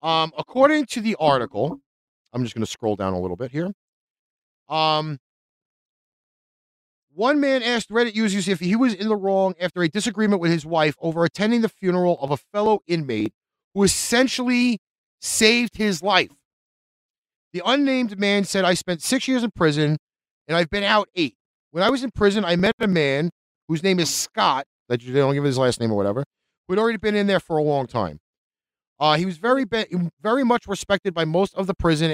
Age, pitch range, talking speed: 40-59, 145-220 Hz, 195 wpm